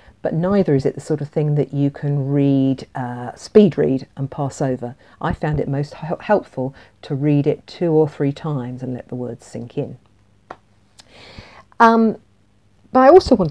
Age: 50-69